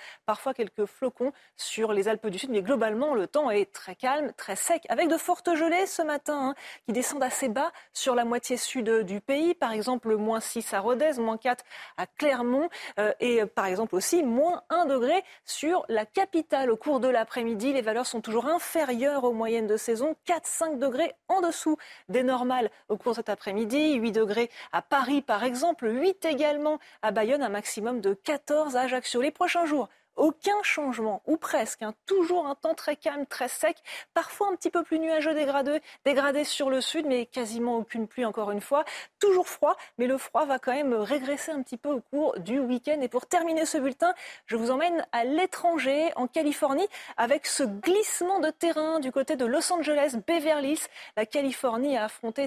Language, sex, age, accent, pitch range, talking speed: French, female, 30-49, French, 235-320 Hz, 200 wpm